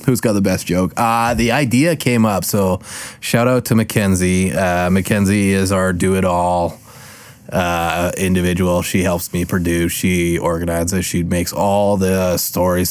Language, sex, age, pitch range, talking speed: English, male, 20-39, 90-105 Hz, 155 wpm